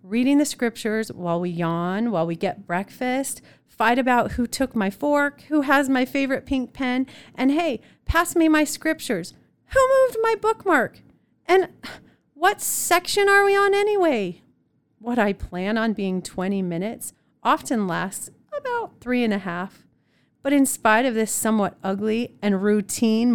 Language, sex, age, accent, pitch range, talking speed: English, female, 40-59, American, 195-265 Hz, 160 wpm